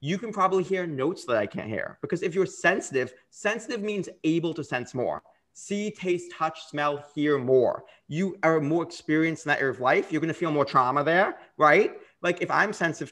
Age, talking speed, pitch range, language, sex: 30-49, 205 wpm, 145-190 Hz, English, male